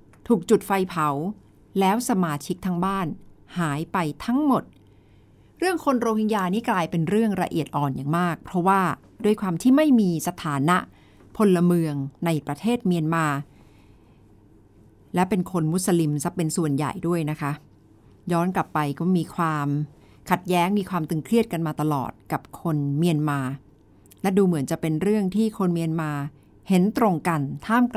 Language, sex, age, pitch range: Thai, female, 60-79, 145-190 Hz